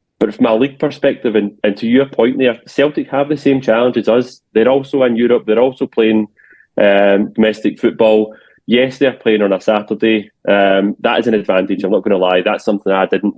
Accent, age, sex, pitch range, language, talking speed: British, 20-39, male, 100-115 Hz, English, 215 wpm